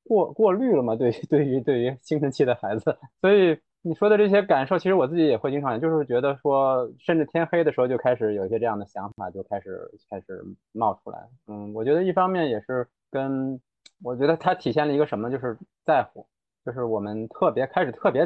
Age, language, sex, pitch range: 20-39, Chinese, male, 110-150 Hz